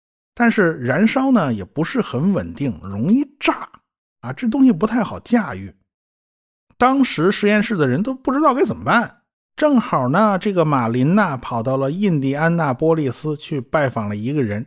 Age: 50-69